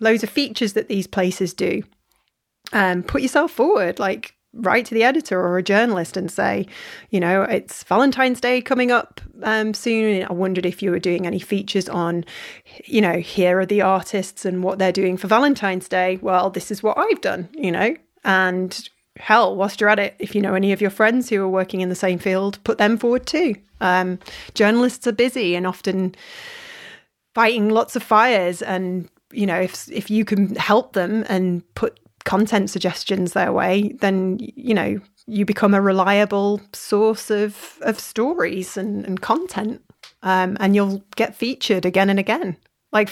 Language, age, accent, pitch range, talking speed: English, 30-49, British, 185-225 Hz, 185 wpm